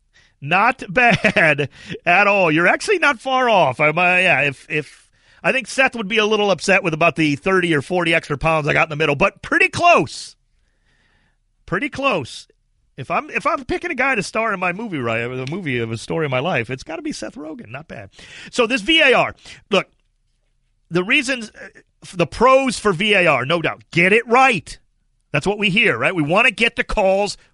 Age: 40-59